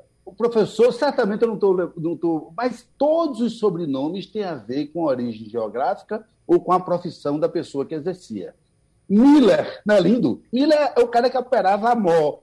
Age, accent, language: 60-79, Brazilian, Portuguese